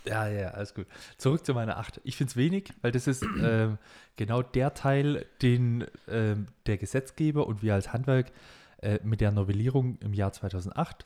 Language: German